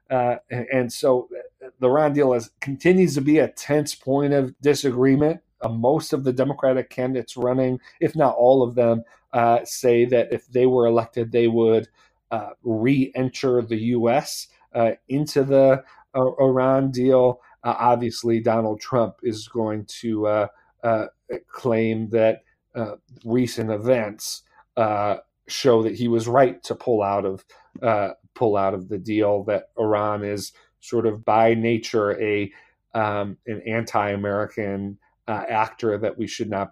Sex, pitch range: male, 110-135 Hz